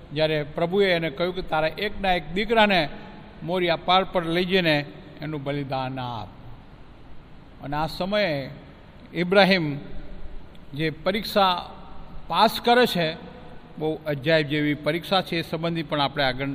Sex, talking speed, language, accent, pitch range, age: male, 115 wpm, Gujarati, native, 155-220 Hz, 50-69